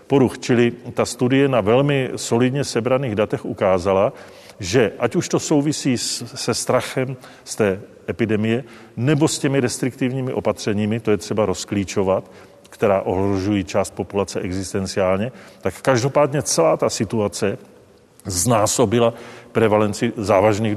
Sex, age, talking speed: male, 40-59, 120 wpm